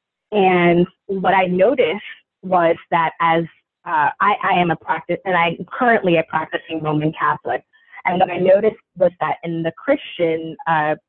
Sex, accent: female, American